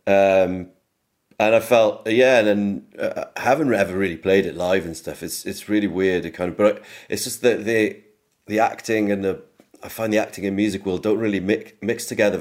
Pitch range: 90-105 Hz